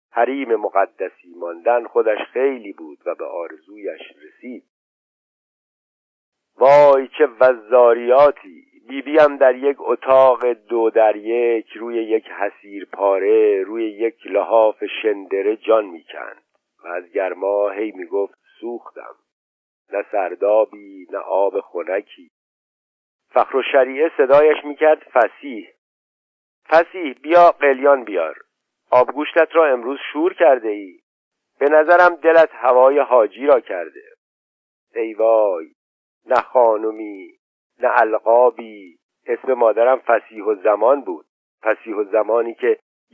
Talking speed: 110 wpm